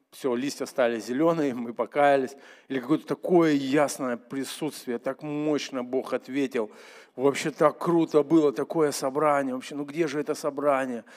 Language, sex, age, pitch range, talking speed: Russian, male, 50-69, 135-160 Hz, 145 wpm